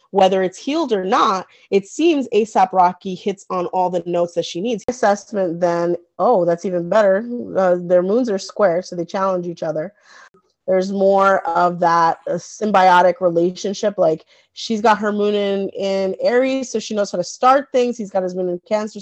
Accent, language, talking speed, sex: American, English, 190 wpm, female